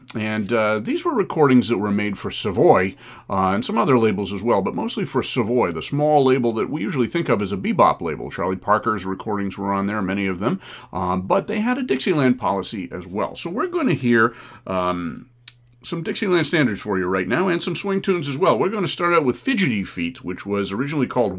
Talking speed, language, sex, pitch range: 230 wpm, English, male, 100-140 Hz